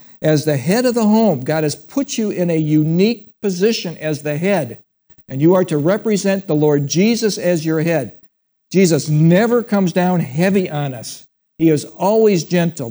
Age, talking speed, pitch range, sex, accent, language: 60-79, 180 wpm, 155-200 Hz, male, American, English